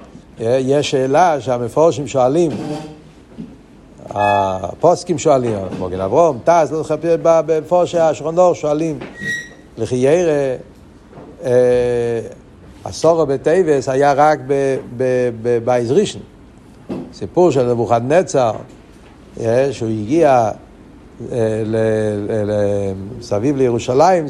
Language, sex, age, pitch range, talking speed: Hebrew, male, 60-79, 120-155 Hz, 85 wpm